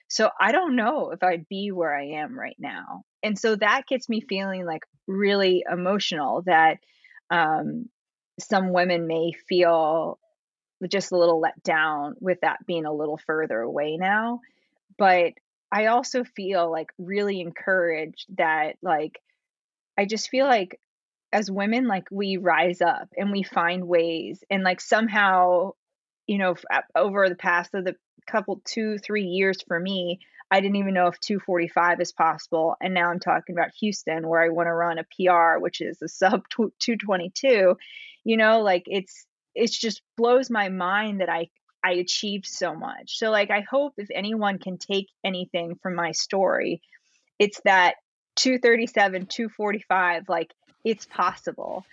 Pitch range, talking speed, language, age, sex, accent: 170-210 Hz, 160 wpm, English, 20-39, female, American